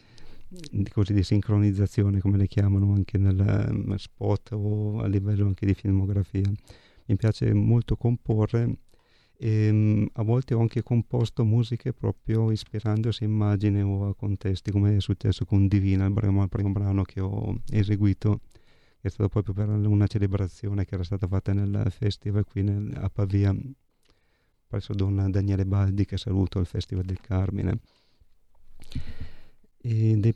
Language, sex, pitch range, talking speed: Italian, male, 100-110 Hz, 145 wpm